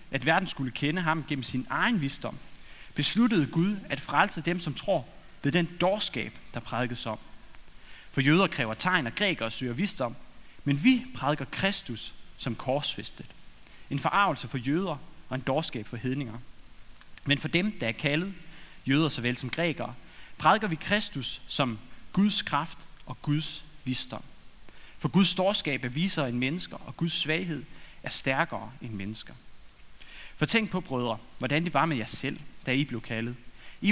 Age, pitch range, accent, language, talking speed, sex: 30-49, 125-170 Hz, native, Danish, 165 wpm, male